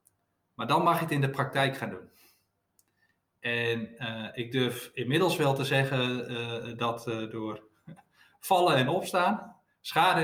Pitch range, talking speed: 125-165 Hz, 160 wpm